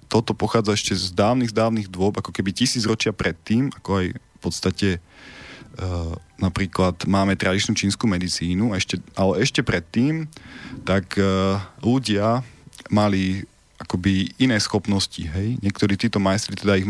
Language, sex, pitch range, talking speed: Slovak, male, 95-110 Hz, 140 wpm